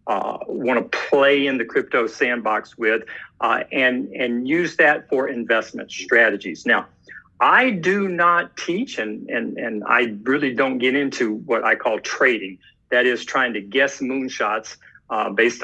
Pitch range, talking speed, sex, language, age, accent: 120-195 Hz, 160 wpm, male, English, 50-69, American